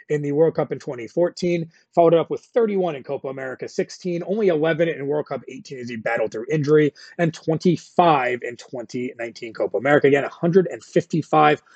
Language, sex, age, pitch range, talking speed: English, male, 30-49, 145-190 Hz, 170 wpm